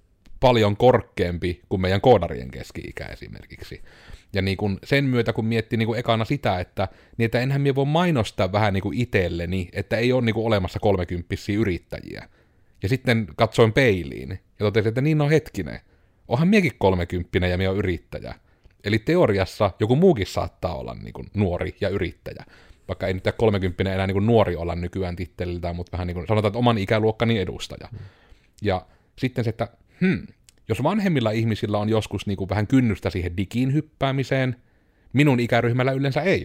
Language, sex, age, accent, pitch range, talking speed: Finnish, male, 30-49, native, 95-125 Hz, 165 wpm